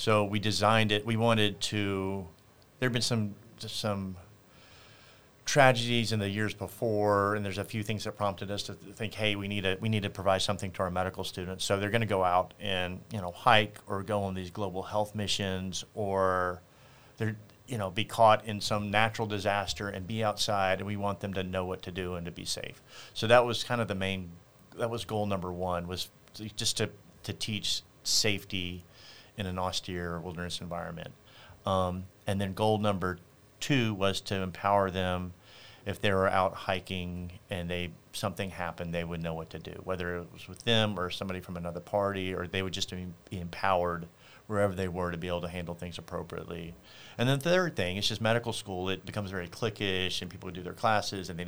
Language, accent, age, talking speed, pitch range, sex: English, American, 40-59, 210 wpm, 90-110 Hz, male